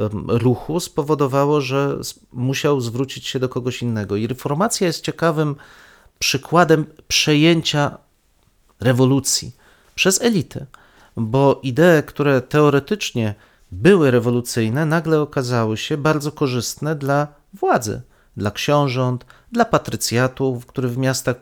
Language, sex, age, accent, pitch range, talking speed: Polish, male, 40-59, native, 125-160 Hz, 105 wpm